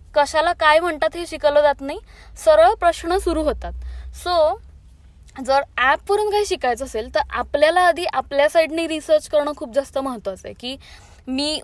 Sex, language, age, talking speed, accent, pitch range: female, Marathi, 20-39, 130 wpm, native, 265-325 Hz